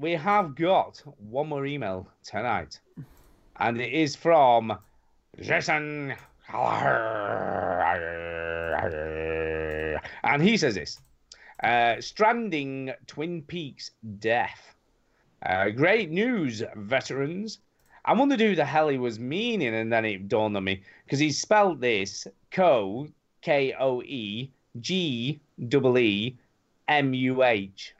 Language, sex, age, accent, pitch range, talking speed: English, male, 30-49, British, 105-150 Hz, 110 wpm